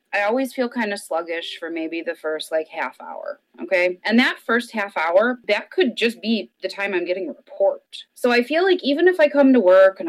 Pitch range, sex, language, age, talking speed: 195-280 Hz, female, English, 30-49, 240 wpm